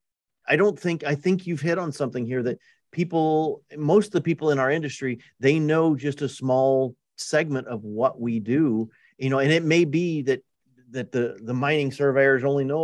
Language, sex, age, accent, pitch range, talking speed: English, male, 40-59, American, 120-145 Hz, 200 wpm